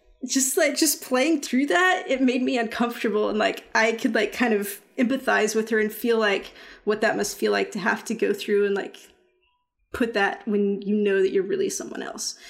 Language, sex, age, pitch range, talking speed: English, female, 20-39, 205-250 Hz, 215 wpm